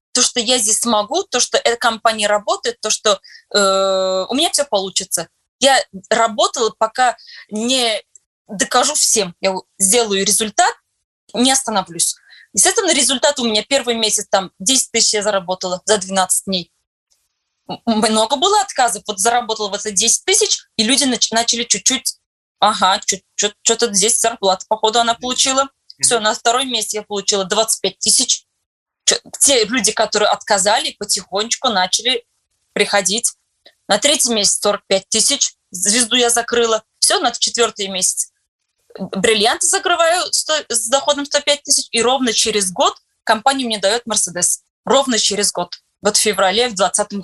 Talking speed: 145 wpm